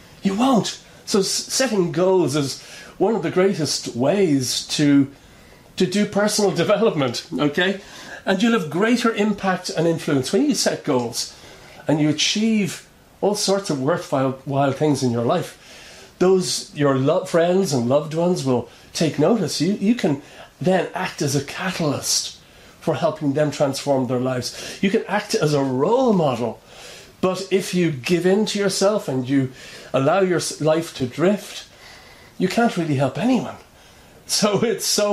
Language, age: English, 40-59